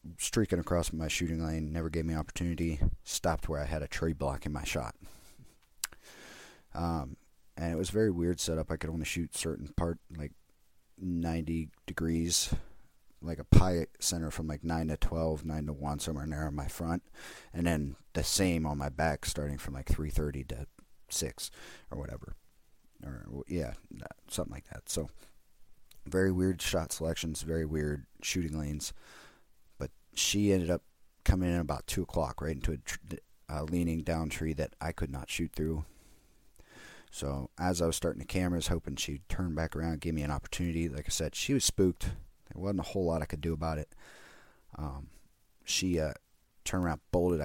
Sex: male